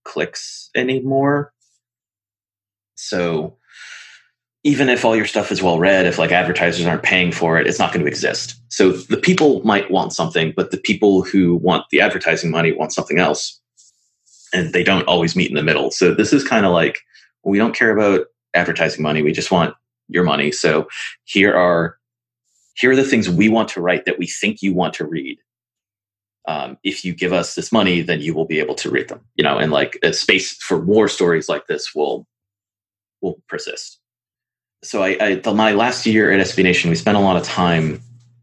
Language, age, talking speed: English, 30-49, 200 wpm